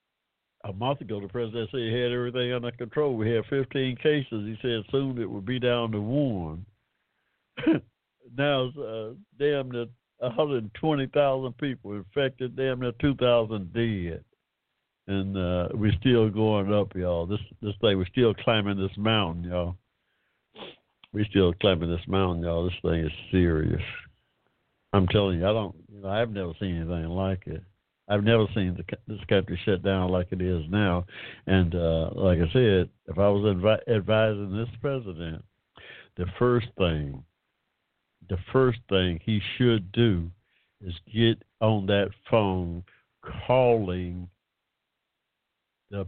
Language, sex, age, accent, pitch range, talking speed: English, male, 60-79, American, 90-120 Hz, 145 wpm